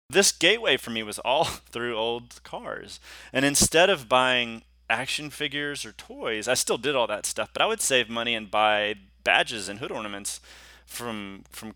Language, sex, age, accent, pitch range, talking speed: English, male, 30-49, American, 105-125 Hz, 185 wpm